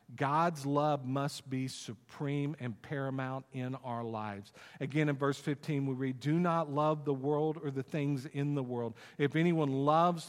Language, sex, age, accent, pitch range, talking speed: English, male, 50-69, American, 130-155 Hz, 175 wpm